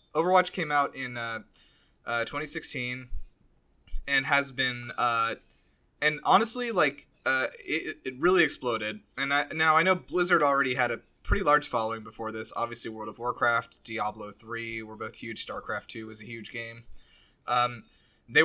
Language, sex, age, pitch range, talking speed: English, male, 20-39, 110-140 Hz, 160 wpm